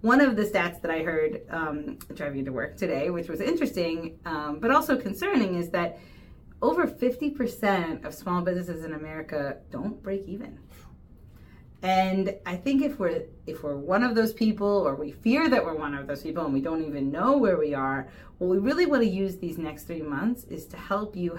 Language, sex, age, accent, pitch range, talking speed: English, female, 30-49, American, 170-245 Hz, 205 wpm